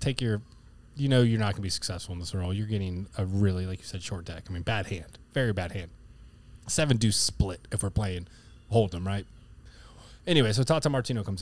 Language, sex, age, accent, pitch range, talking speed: English, male, 20-39, American, 105-130 Hz, 225 wpm